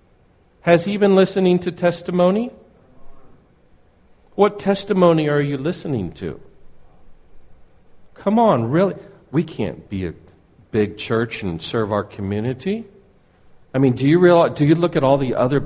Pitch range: 105-170 Hz